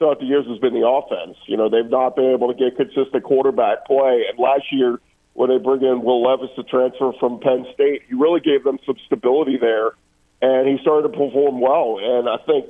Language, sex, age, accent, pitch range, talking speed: English, male, 50-69, American, 130-175 Hz, 225 wpm